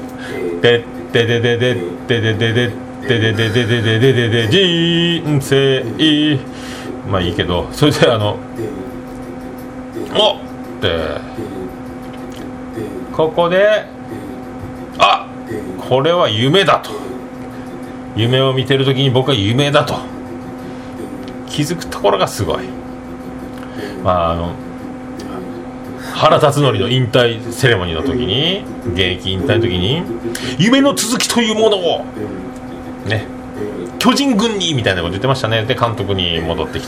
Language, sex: Japanese, male